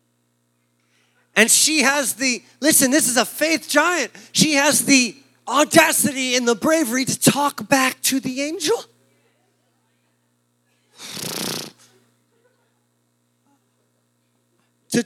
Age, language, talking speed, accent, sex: 30-49, English, 95 wpm, American, male